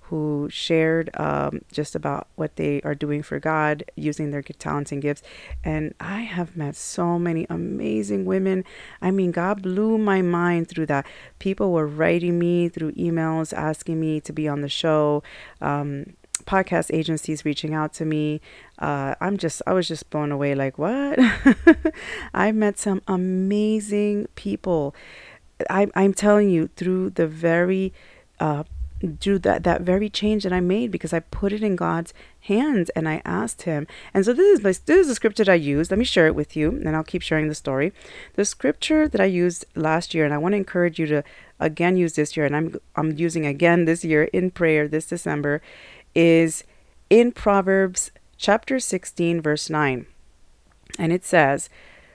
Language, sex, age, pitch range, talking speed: English, female, 30-49, 150-195 Hz, 180 wpm